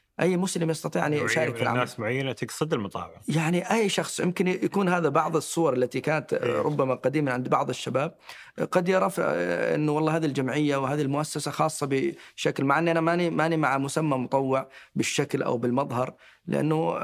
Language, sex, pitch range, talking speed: Arabic, male, 125-155 Hz, 175 wpm